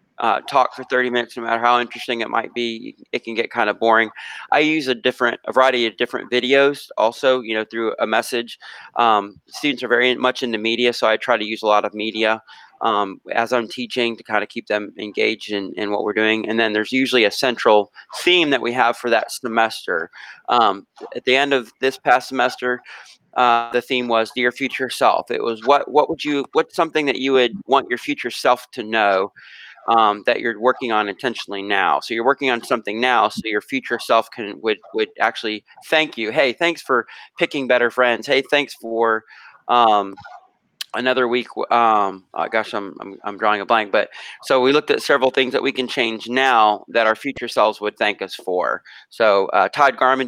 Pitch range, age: 110-130 Hz, 30-49